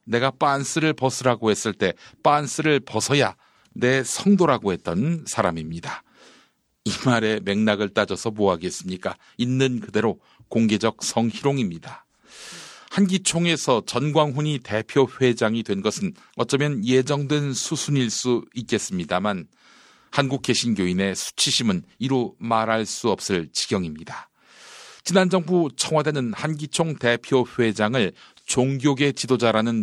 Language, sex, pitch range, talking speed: English, male, 110-150 Hz, 90 wpm